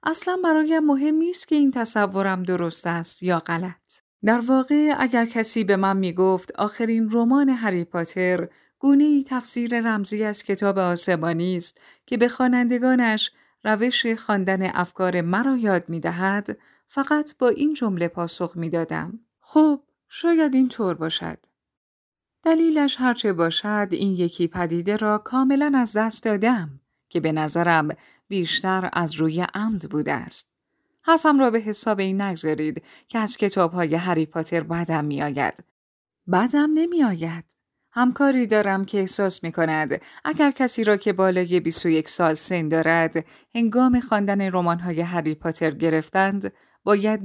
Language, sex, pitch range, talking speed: Persian, female, 170-245 Hz, 135 wpm